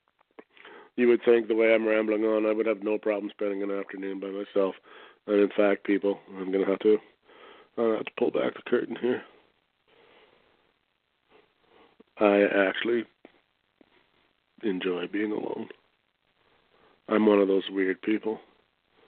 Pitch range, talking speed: 95-110 Hz, 140 wpm